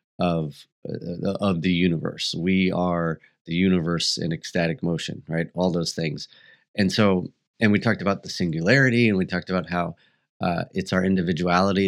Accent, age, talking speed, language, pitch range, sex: American, 30-49, 165 wpm, English, 85-100 Hz, male